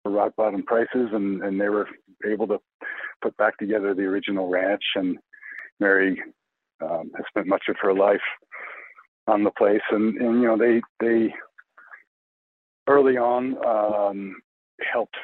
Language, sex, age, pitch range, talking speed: English, male, 50-69, 95-110 Hz, 150 wpm